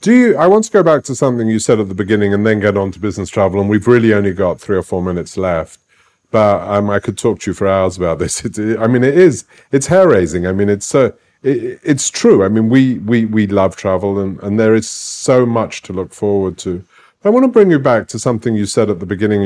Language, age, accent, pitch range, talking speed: English, 40-59, British, 100-120 Hz, 265 wpm